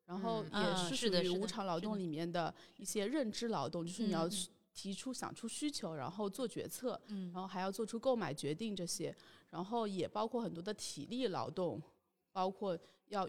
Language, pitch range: Chinese, 185-250 Hz